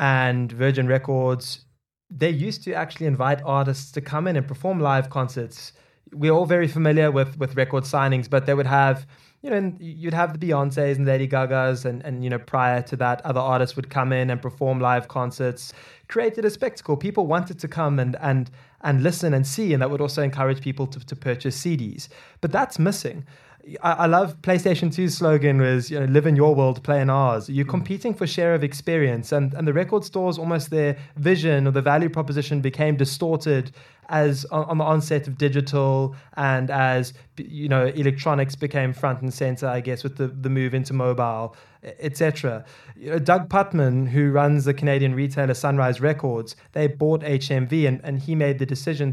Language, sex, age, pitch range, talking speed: English, male, 20-39, 130-155 Hz, 195 wpm